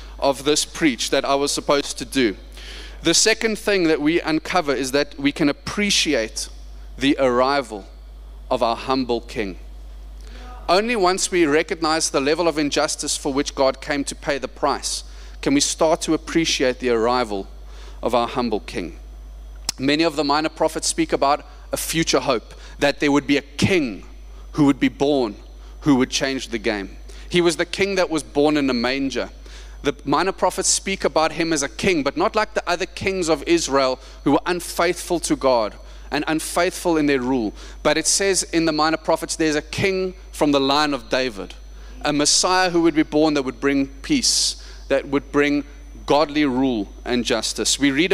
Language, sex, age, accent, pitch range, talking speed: English, male, 30-49, South African, 130-170 Hz, 185 wpm